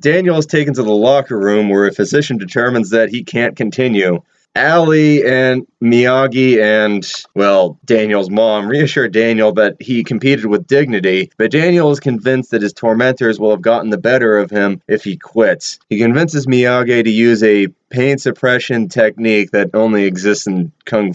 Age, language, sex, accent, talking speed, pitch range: 30-49, English, male, American, 170 wpm, 105-130 Hz